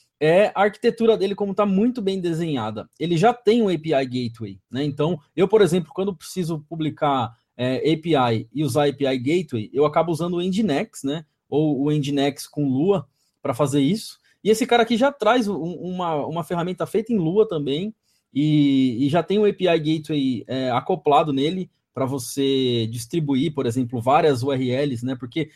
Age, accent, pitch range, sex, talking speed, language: 20-39, Brazilian, 140-195 Hz, male, 180 wpm, Portuguese